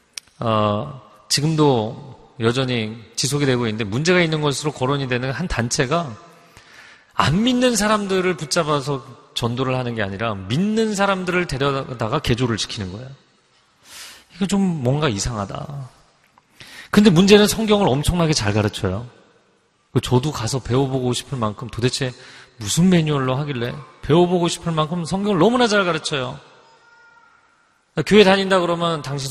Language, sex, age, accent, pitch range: Korean, male, 40-59, native, 120-170 Hz